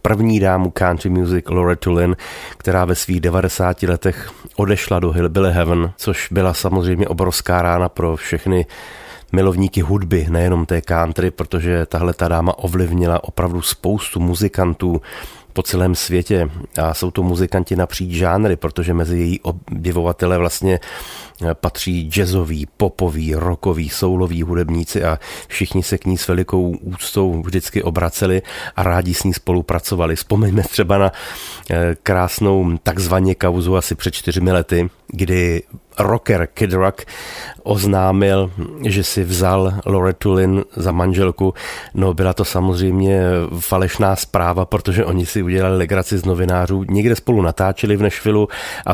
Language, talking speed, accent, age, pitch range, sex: Czech, 135 wpm, native, 30-49, 90-95 Hz, male